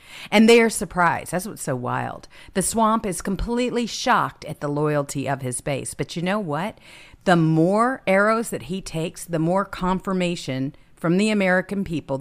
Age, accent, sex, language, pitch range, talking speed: 50-69, American, female, English, 135-195 Hz, 175 wpm